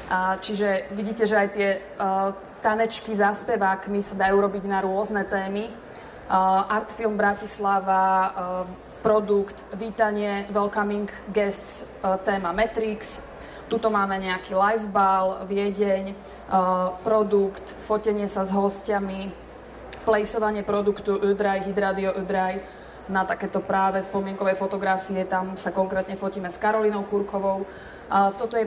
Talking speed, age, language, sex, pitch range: 120 wpm, 20-39, Slovak, female, 195-210 Hz